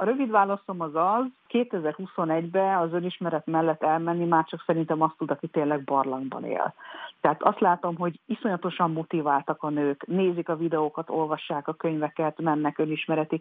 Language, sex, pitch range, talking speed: Hungarian, female, 145-175 Hz, 155 wpm